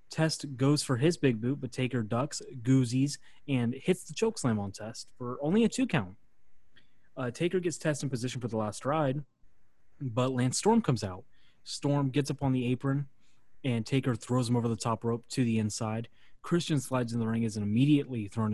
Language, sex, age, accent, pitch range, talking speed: English, male, 20-39, American, 115-145 Hz, 200 wpm